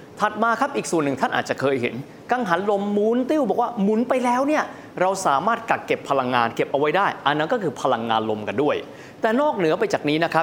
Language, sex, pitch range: Thai, male, 140-205 Hz